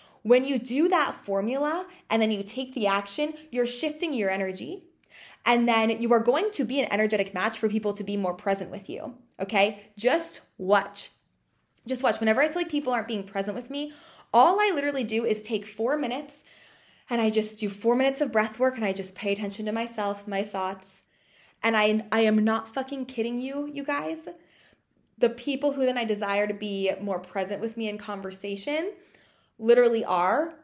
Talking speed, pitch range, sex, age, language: 195 wpm, 205-270 Hz, female, 20-39, English